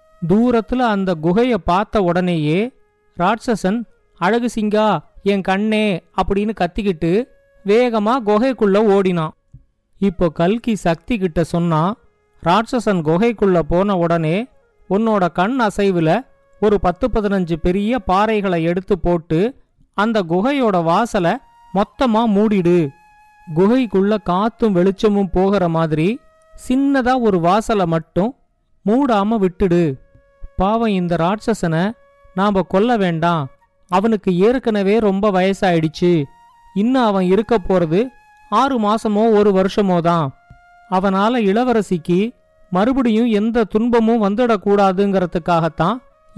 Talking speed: 95 wpm